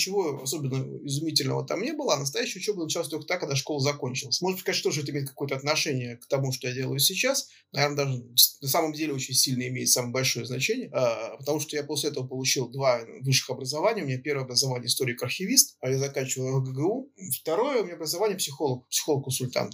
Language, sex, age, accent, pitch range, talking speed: Russian, male, 20-39, native, 130-155 Hz, 190 wpm